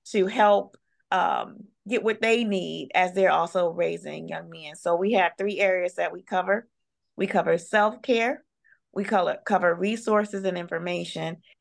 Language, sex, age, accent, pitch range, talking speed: English, female, 30-49, American, 175-205 Hz, 160 wpm